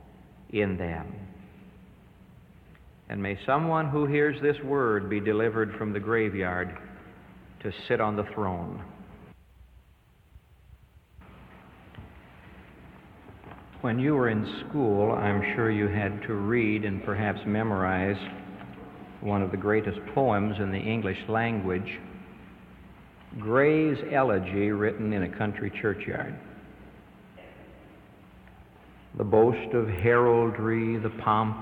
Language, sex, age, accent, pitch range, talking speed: English, male, 60-79, American, 95-115 Hz, 105 wpm